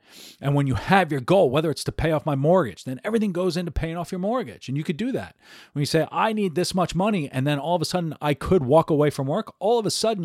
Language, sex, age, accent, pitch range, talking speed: English, male, 40-59, American, 130-195 Hz, 295 wpm